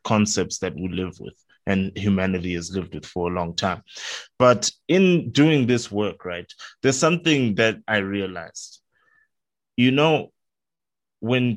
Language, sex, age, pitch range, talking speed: English, male, 20-39, 100-130 Hz, 145 wpm